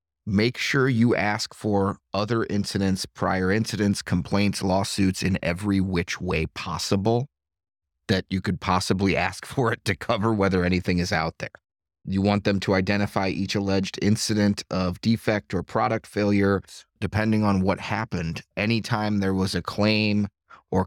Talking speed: 150 wpm